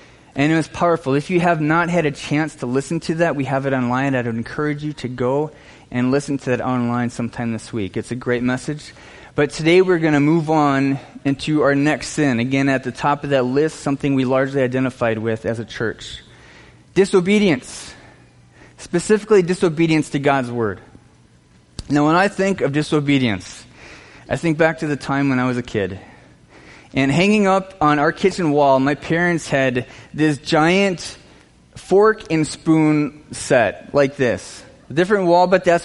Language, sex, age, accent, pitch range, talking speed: English, male, 20-39, American, 135-190 Hz, 180 wpm